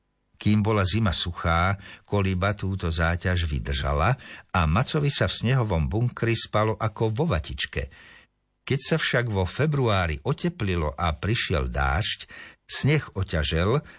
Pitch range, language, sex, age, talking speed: 85-110 Hz, Slovak, male, 60-79, 125 wpm